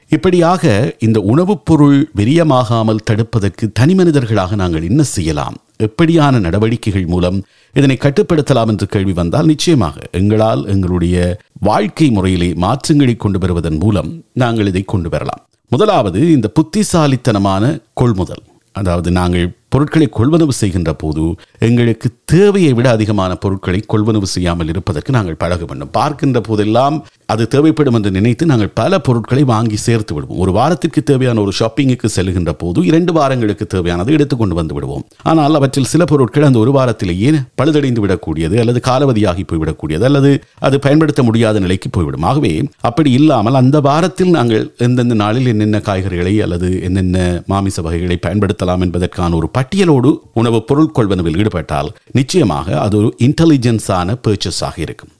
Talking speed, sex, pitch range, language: 130 wpm, male, 95-140 Hz, Tamil